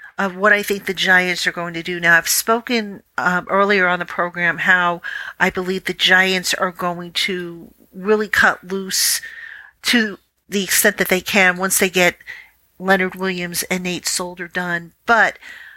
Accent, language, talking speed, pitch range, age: American, English, 170 wpm, 185-240 Hz, 50-69